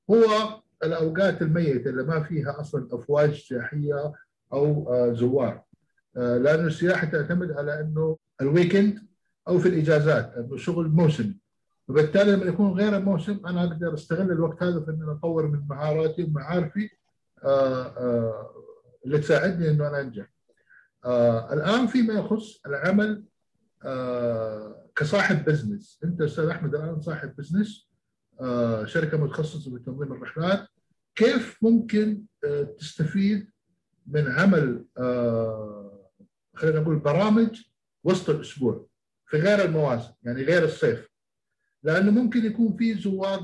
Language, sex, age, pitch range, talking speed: Arabic, male, 50-69, 145-190 Hz, 125 wpm